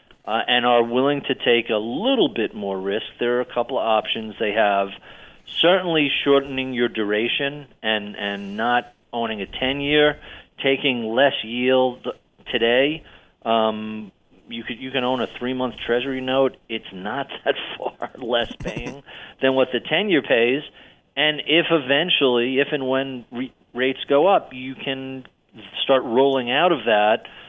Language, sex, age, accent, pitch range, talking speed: English, male, 40-59, American, 115-140 Hz, 155 wpm